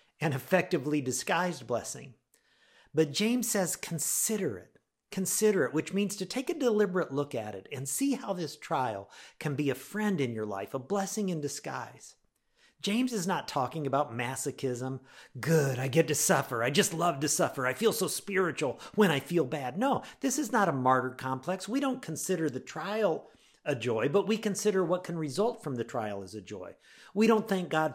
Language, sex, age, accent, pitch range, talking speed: English, male, 50-69, American, 130-195 Hz, 195 wpm